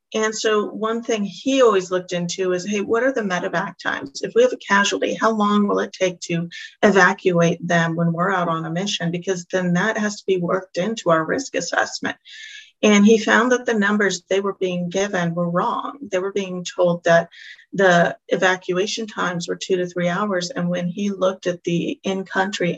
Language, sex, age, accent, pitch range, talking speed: English, female, 40-59, American, 175-205 Hz, 205 wpm